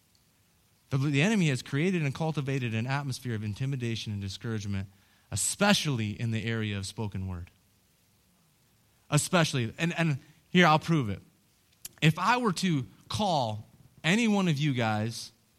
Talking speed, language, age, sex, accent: 140 wpm, English, 30-49, male, American